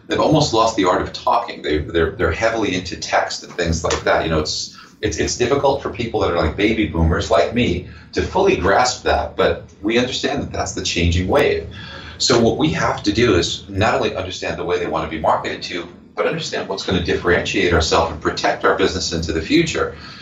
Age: 40-59